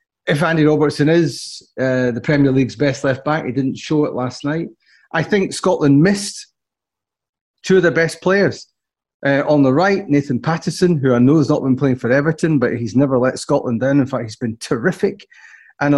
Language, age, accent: English, 30-49, British